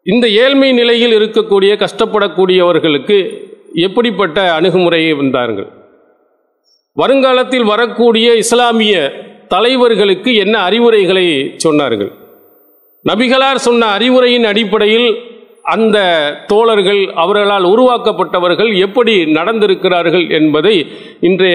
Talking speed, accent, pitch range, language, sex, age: 95 wpm, Indian, 180-240 Hz, English, male, 50-69